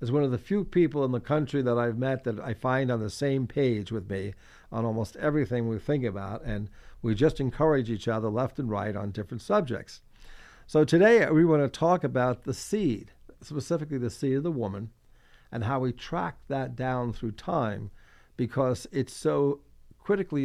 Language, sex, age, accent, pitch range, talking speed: English, male, 50-69, American, 110-135 Hz, 195 wpm